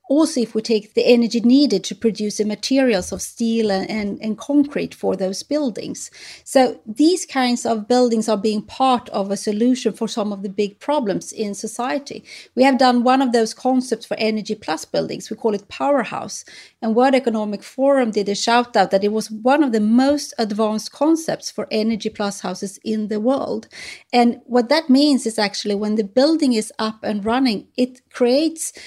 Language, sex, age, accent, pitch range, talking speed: English, female, 30-49, Swedish, 215-265 Hz, 195 wpm